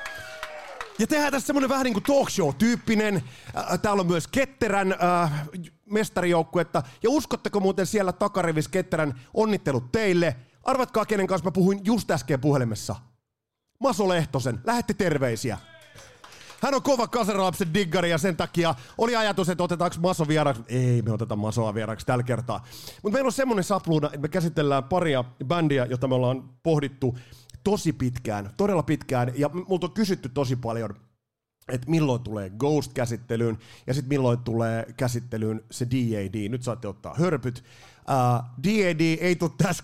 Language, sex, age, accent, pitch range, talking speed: Finnish, male, 30-49, native, 120-185 Hz, 150 wpm